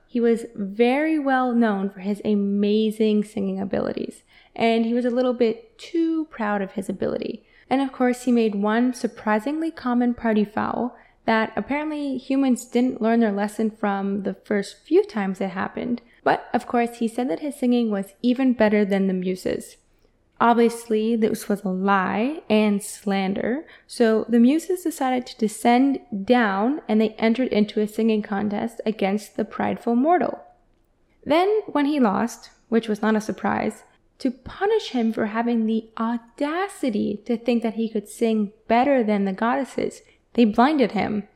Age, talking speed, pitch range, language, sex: 20-39, 165 wpm, 210-255 Hz, English, female